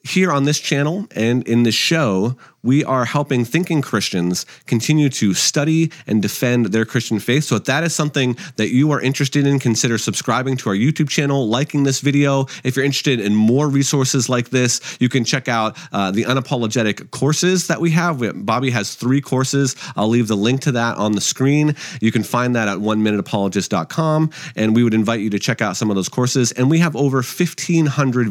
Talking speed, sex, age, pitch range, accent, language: 210 wpm, male, 30-49, 105-135 Hz, American, English